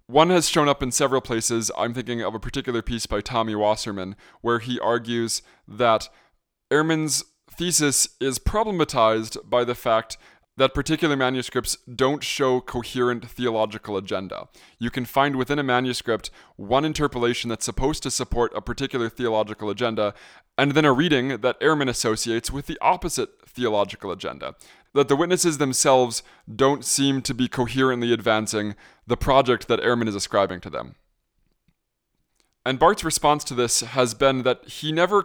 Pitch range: 115-140 Hz